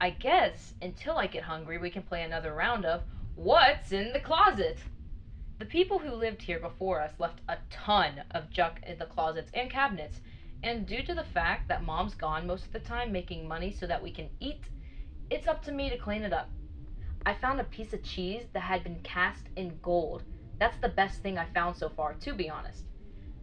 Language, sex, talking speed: English, female, 215 wpm